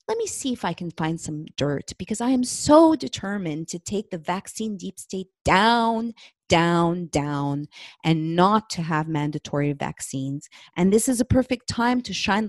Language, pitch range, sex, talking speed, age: English, 150-200 Hz, female, 180 wpm, 30-49